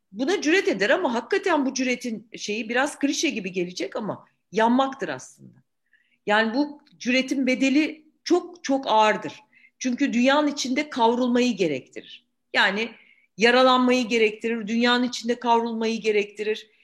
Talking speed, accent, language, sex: 120 wpm, native, Turkish, female